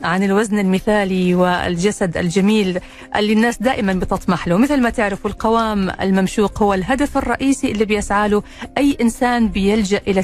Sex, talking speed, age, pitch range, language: female, 140 wpm, 40-59, 185-245 Hz, Arabic